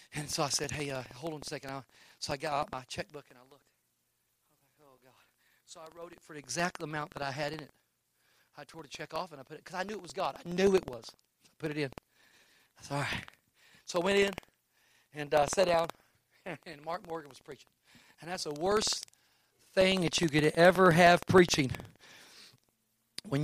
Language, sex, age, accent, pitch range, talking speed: English, male, 40-59, American, 145-190 Hz, 225 wpm